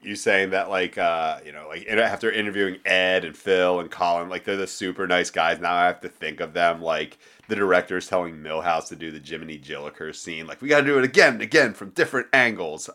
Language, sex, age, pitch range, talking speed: English, male, 30-49, 85-110 Hz, 235 wpm